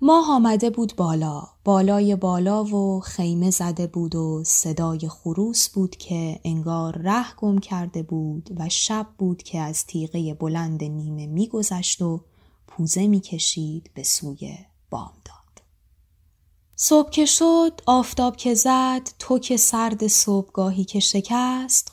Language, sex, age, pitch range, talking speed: Persian, female, 20-39, 150-205 Hz, 130 wpm